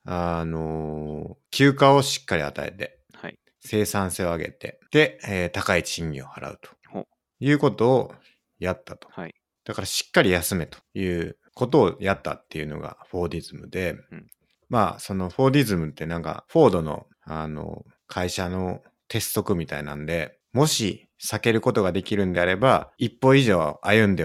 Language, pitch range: Japanese, 85-125 Hz